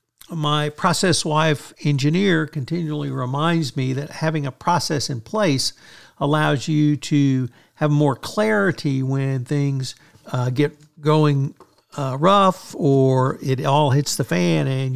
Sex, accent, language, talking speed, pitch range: male, American, English, 130 wpm, 135-160 Hz